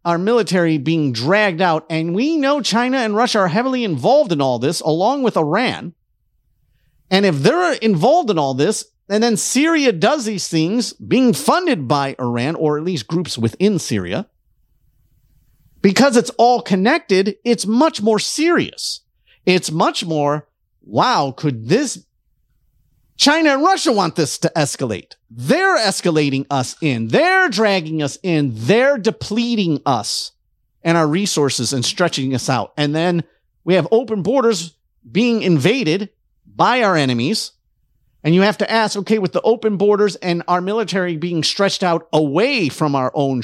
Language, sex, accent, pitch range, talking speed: English, male, American, 145-225 Hz, 155 wpm